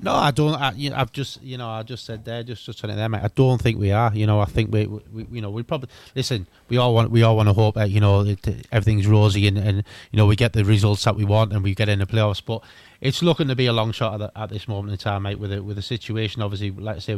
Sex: male